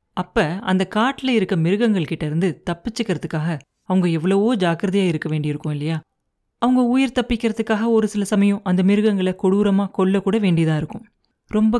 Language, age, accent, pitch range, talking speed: Tamil, 30-49, native, 165-215 Hz, 135 wpm